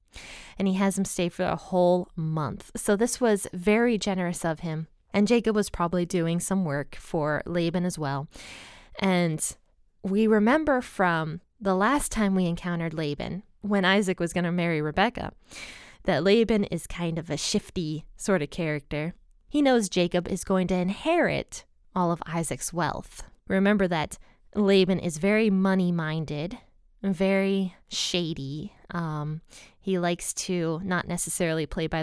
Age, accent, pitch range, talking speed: 20-39, American, 165-205 Hz, 150 wpm